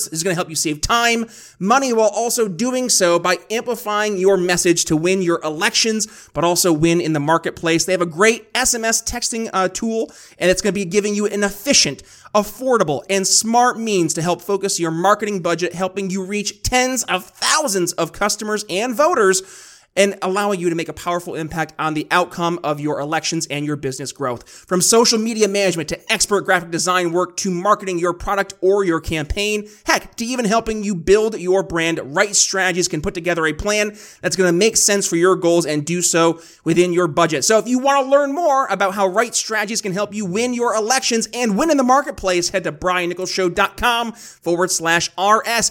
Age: 30-49